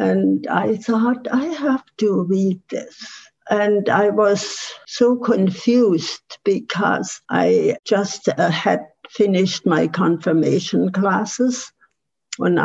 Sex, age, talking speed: female, 60-79, 105 wpm